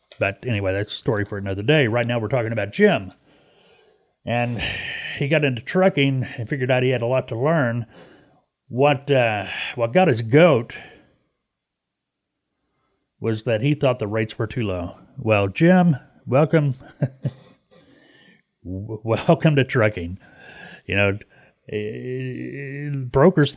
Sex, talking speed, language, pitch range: male, 135 wpm, English, 110-140 Hz